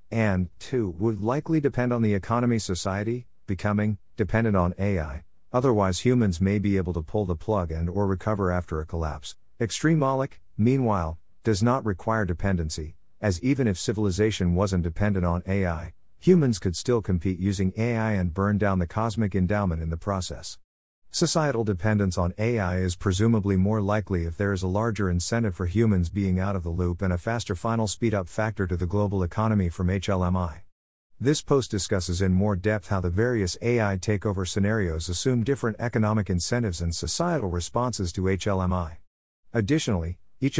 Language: English